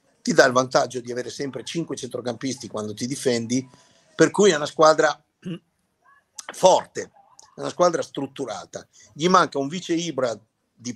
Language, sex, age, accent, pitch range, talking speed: English, male, 50-69, Italian, 120-165 Hz, 155 wpm